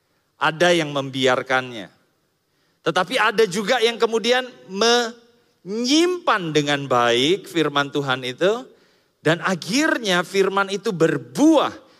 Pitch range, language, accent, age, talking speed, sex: 140-210 Hz, Indonesian, native, 40-59, 95 wpm, male